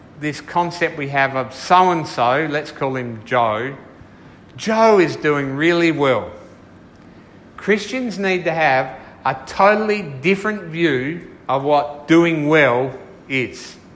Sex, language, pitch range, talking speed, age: male, English, 145-195 Hz, 120 wpm, 50-69